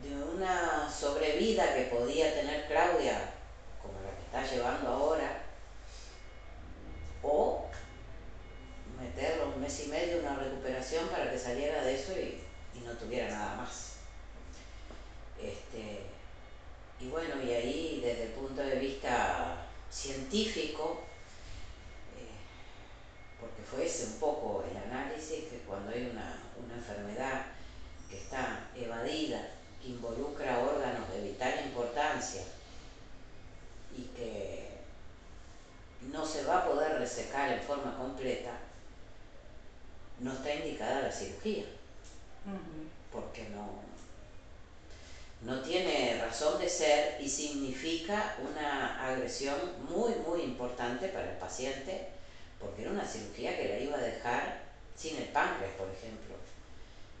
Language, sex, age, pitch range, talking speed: Portuguese, female, 40-59, 95-140 Hz, 115 wpm